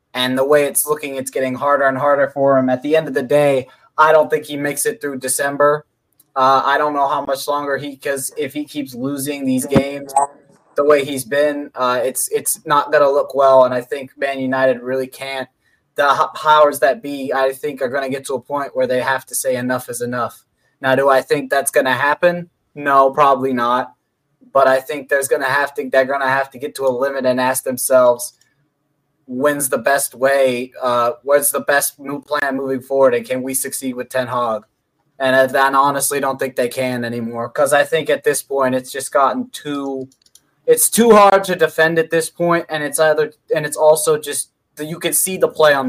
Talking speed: 220 wpm